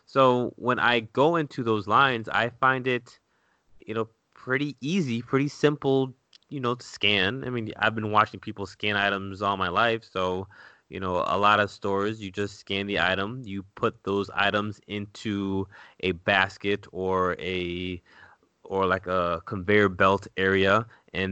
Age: 20-39